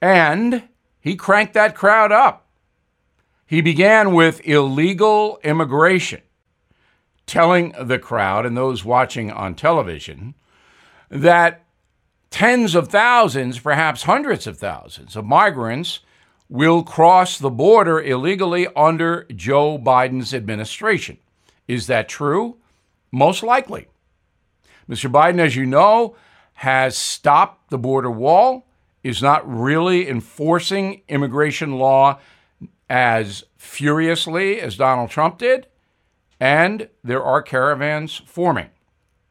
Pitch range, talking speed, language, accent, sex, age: 120-185 Hz, 105 wpm, English, American, male, 60-79